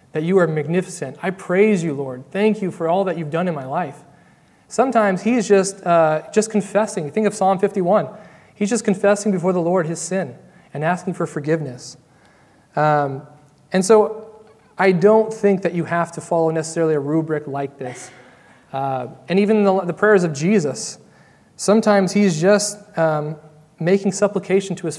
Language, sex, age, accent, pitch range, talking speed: English, male, 30-49, American, 160-205 Hz, 175 wpm